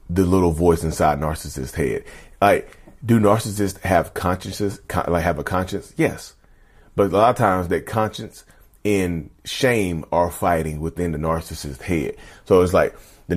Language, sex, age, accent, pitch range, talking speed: English, male, 30-49, American, 85-100 Hz, 155 wpm